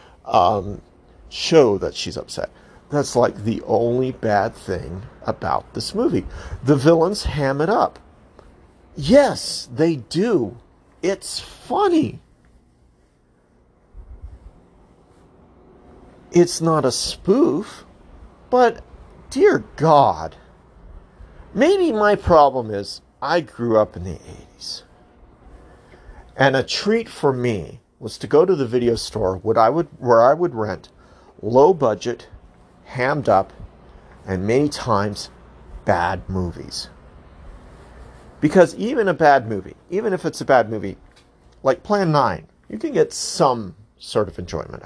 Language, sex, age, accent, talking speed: English, male, 50-69, American, 120 wpm